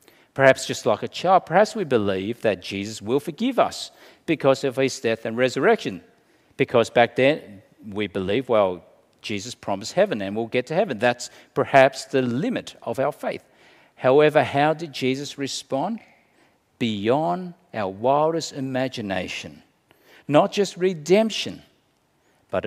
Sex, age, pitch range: male, 50-69, 110-165 Hz